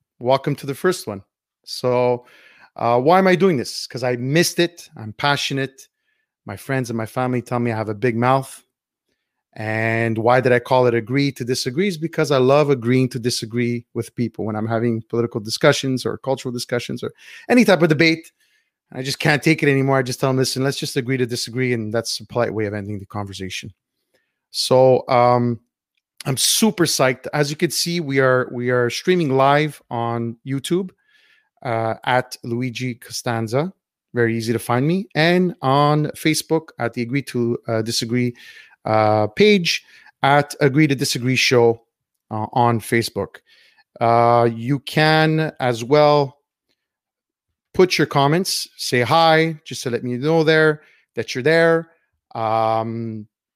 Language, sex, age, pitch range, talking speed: English, male, 30-49, 120-155 Hz, 170 wpm